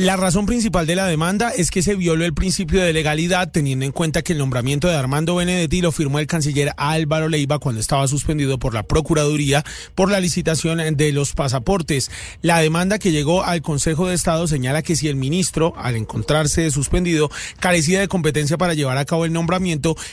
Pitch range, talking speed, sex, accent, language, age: 145-175 Hz, 195 wpm, male, Colombian, Spanish, 30-49